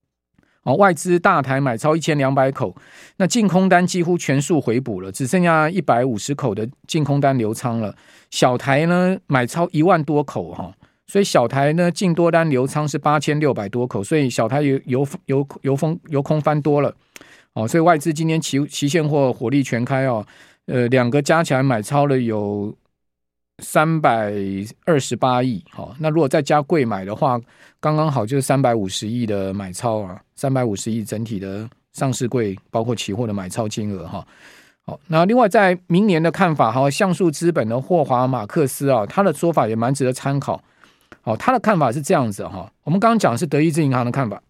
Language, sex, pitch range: Chinese, male, 120-165 Hz